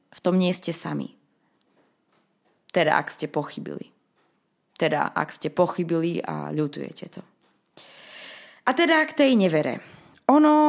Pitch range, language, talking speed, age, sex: 170-265 Hz, Slovak, 125 wpm, 20-39, female